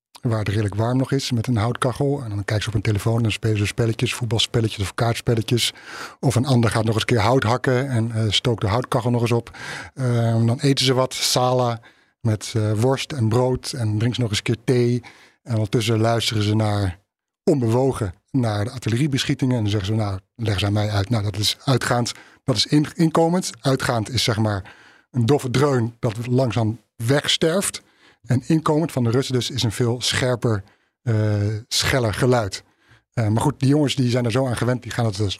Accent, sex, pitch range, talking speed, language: Dutch, male, 110-135 Hz, 215 wpm, Dutch